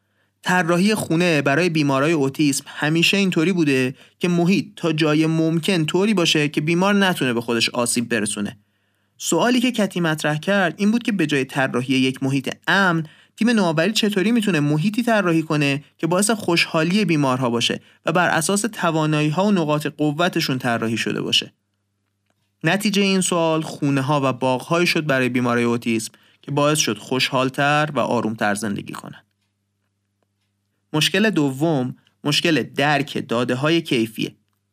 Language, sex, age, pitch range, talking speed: Persian, male, 30-49, 120-170 Hz, 140 wpm